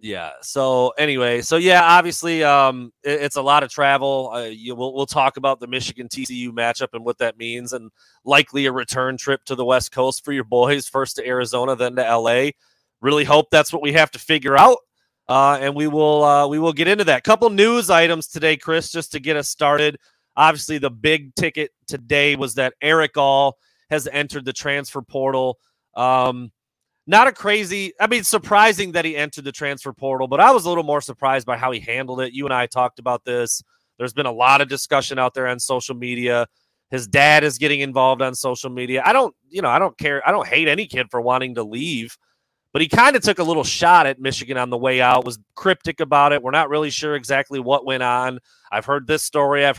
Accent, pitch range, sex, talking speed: American, 125-150 Hz, male, 225 wpm